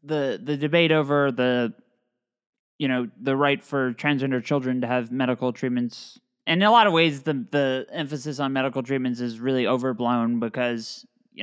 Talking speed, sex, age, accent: 175 wpm, male, 20-39, American